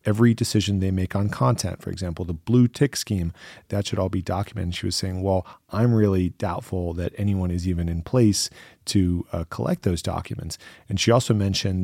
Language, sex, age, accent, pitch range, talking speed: English, male, 30-49, American, 90-105 Hz, 200 wpm